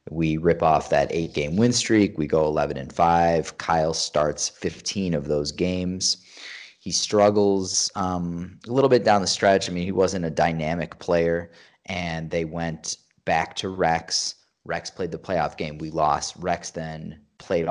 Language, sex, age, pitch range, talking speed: English, male, 20-39, 80-95 Hz, 170 wpm